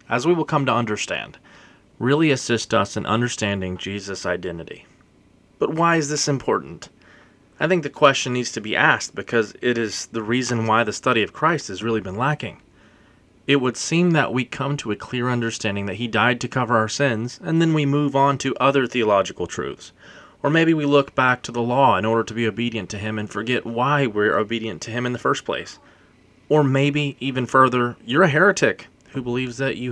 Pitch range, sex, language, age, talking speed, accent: 105-135 Hz, male, English, 30-49, 205 wpm, American